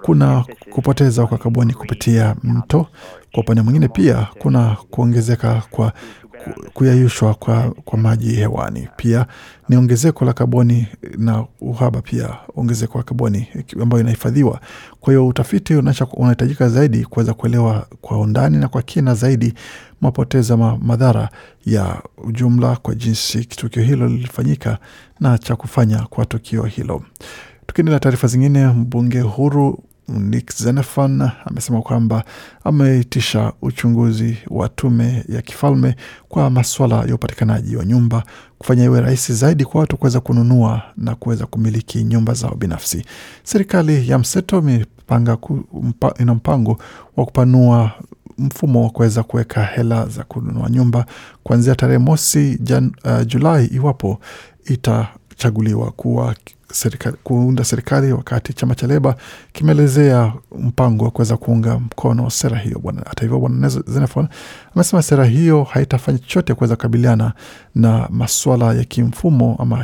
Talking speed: 130 wpm